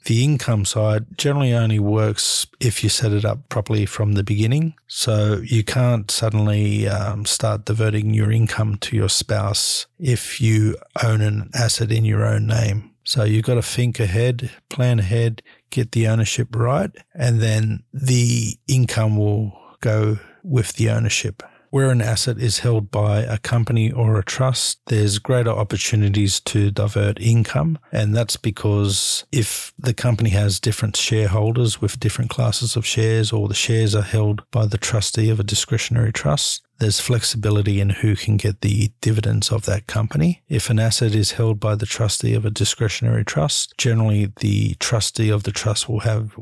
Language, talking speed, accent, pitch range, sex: English, 170 wpm, Australian, 105-120 Hz, male